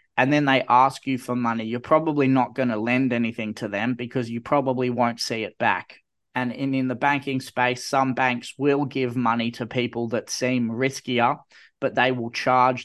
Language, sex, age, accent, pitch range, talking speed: English, male, 20-39, Australian, 120-130 Hz, 200 wpm